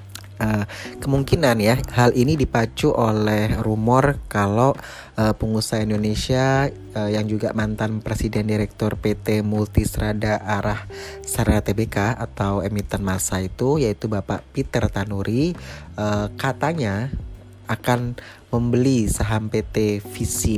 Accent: native